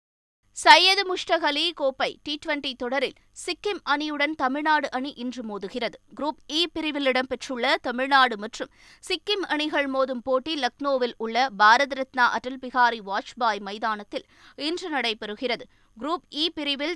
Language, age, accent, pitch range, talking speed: Tamil, 20-39, native, 240-305 Hz, 115 wpm